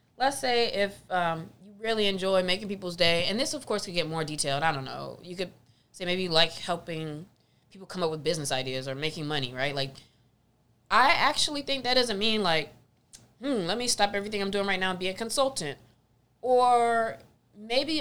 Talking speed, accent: 205 wpm, American